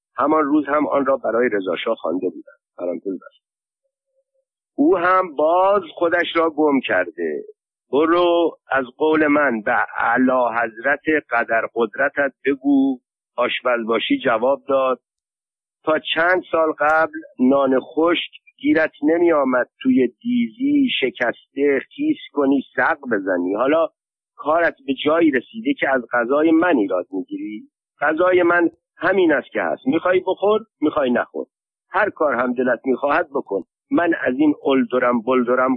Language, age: Persian, 50-69